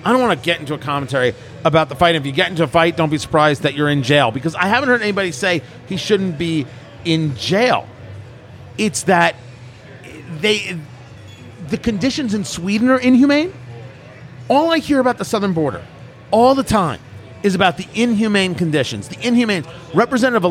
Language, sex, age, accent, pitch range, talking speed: English, male, 40-59, American, 140-230 Hz, 180 wpm